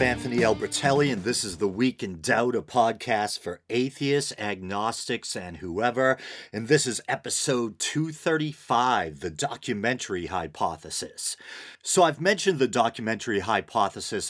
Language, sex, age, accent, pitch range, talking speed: English, male, 40-59, American, 90-130 Hz, 125 wpm